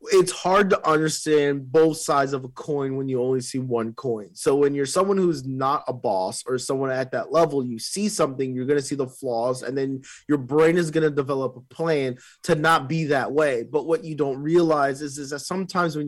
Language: English